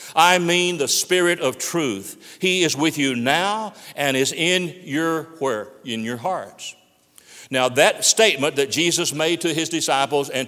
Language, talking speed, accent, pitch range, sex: English, 165 wpm, American, 155-215 Hz, male